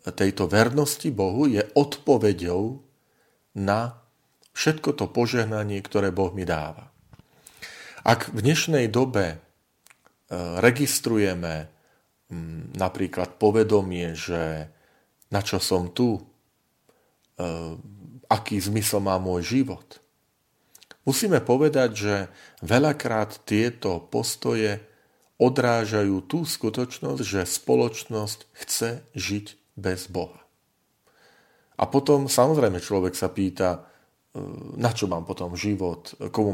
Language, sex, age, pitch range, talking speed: Slovak, male, 40-59, 95-125 Hz, 95 wpm